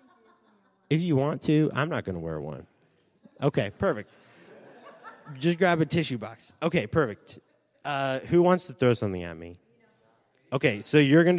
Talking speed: 165 wpm